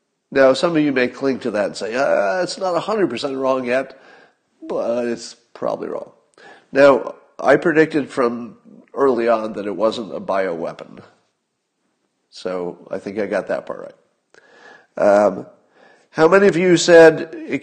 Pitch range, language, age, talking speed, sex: 110-150 Hz, English, 50-69, 155 wpm, male